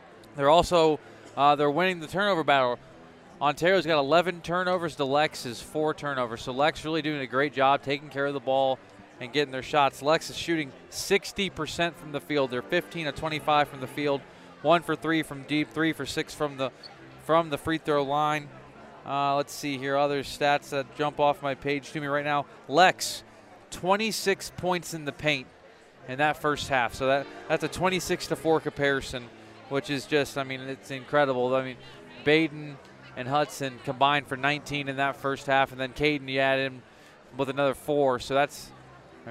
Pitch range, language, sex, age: 135-155 Hz, English, male, 30-49